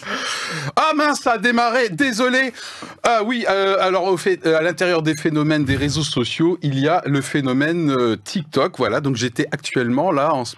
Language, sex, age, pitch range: French, male, 30-49, 120-160 Hz